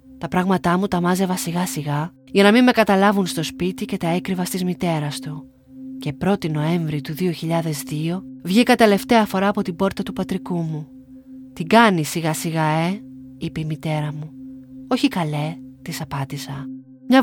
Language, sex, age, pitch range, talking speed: Greek, female, 30-49, 155-210 Hz, 165 wpm